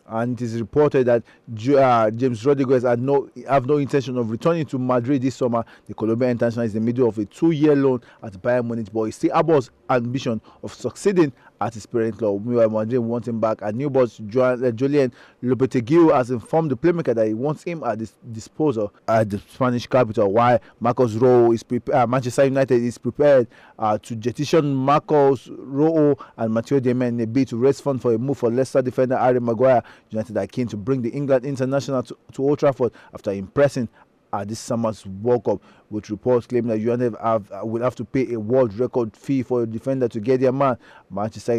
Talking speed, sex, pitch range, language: 200 wpm, male, 110-135 Hz, English